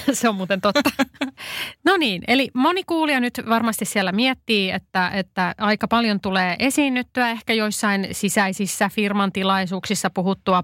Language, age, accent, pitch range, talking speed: Finnish, 30-49, native, 185-225 Hz, 140 wpm